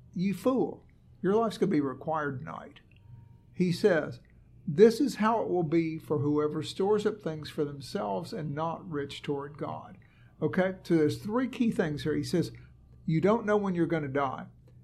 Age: 60-79